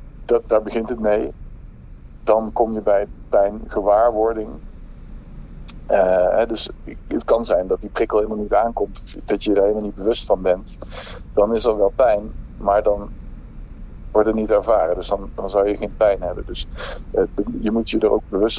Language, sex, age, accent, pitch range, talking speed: Dutch, male, 50-69, Dutch, 95-110 Hz, 180 wpm